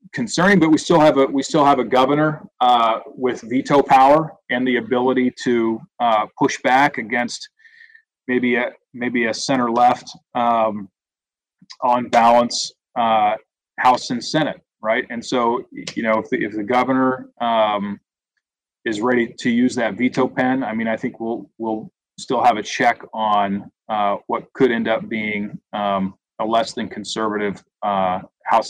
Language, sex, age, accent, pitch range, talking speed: English, male, 30-49, American, 115-145 Hz, 165 wpm